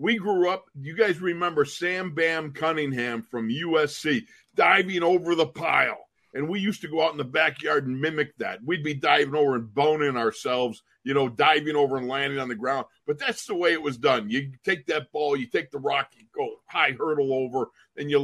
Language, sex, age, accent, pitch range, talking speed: English, male, 50-69, American, 130-160 Hz, 215 wpm